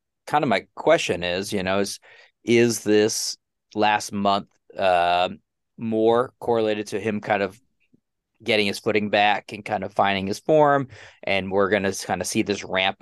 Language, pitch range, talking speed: English, 100-115 Hz, 175 wpm